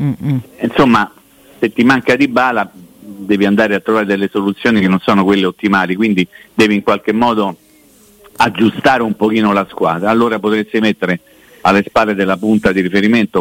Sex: male